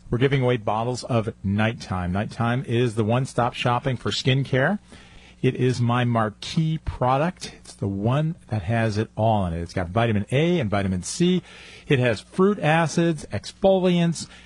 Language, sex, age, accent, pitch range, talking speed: English, male, 40-59, American, 105-145 Hz, 160 wpm